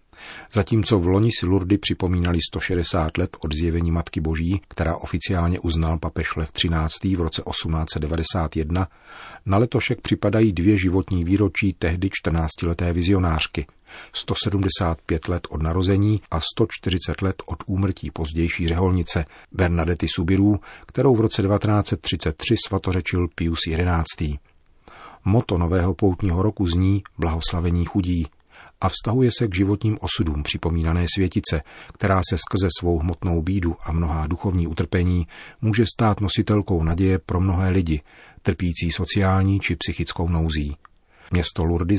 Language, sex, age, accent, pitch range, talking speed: Czech, male, 40-59, native, 85-100 Hz, 125 wpm